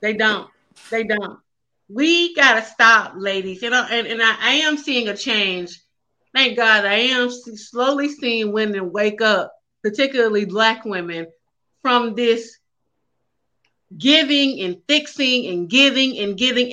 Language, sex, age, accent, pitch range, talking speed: English, female, 30-49, American, 225-305 Hz, 140 wpm